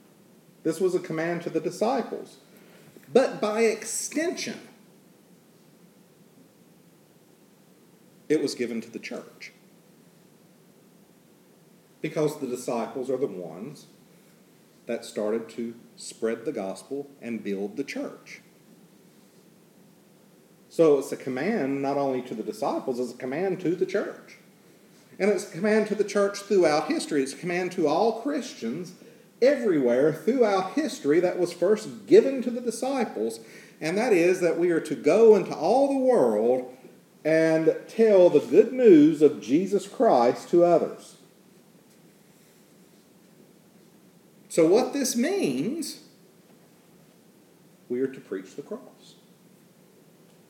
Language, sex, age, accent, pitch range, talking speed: English, male, 40-59, American, 150-230 Hz, 125 wpm